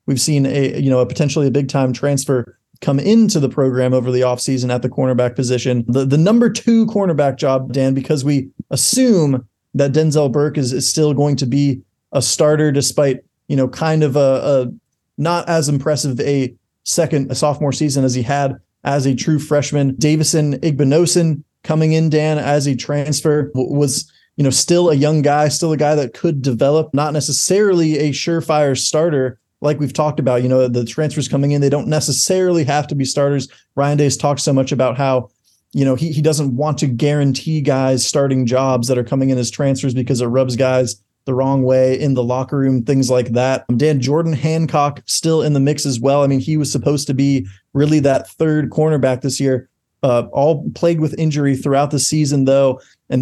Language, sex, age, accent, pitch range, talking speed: English, male, 30-49, American, 130-150 Hz, 200 wpm